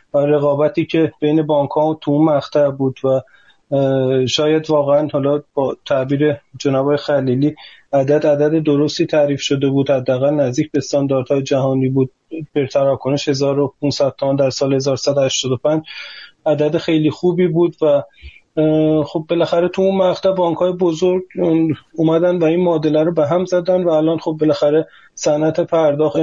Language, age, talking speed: Persian, 30-49, 140 wpm